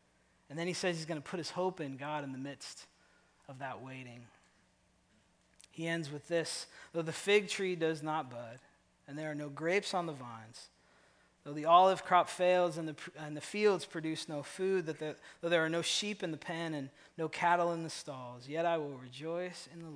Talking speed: 215 wpm